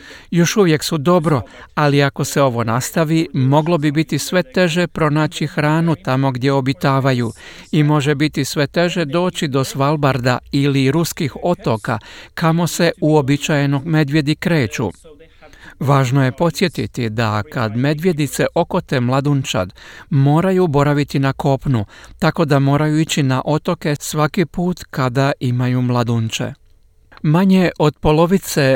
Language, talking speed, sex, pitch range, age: Croatian, 125 wpm, male, 130-160 Hz, 50-69